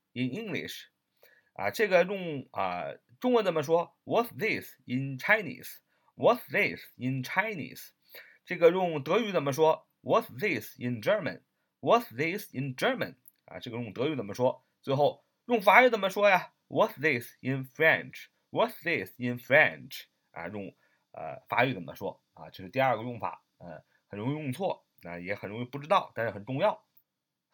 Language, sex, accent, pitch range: Chinese, male, native, 125-205 Hz